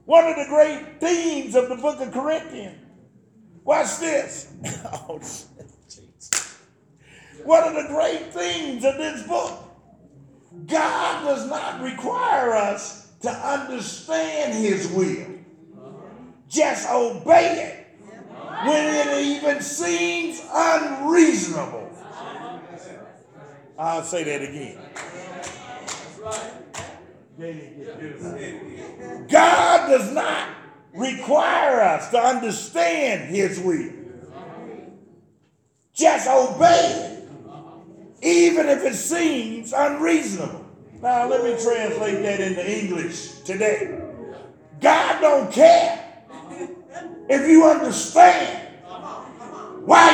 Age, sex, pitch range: 50-69, male, 205-325 Hz